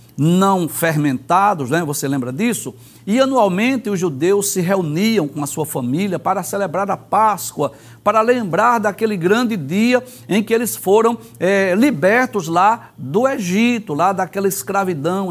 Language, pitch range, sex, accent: Portuguese, 160-230 Hz, male, Brazilian